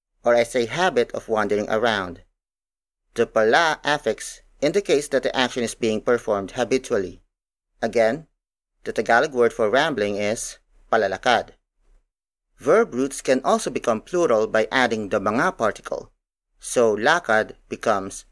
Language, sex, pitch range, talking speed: English, male, 105-130 Hz, 130 wpm